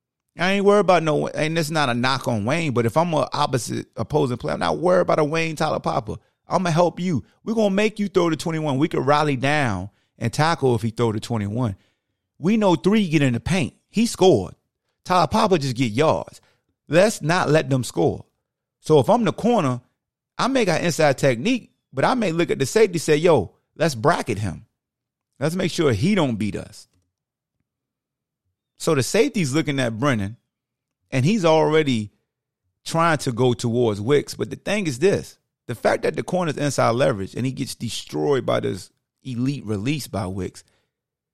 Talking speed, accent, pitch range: 200 wpm, American, 120-165 Hz